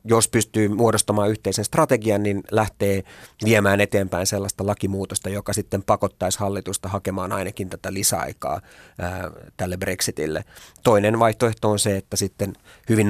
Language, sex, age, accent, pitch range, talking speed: Finnish, male, 30-49, native, 95-105 Hz, 130 wpm